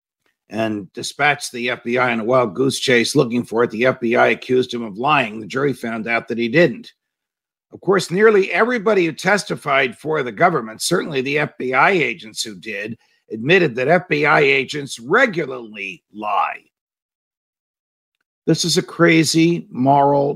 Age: 50-69